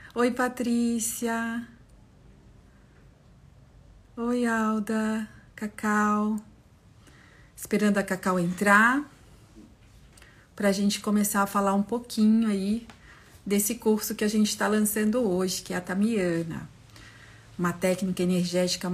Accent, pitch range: Brazilian, 175-230 Hz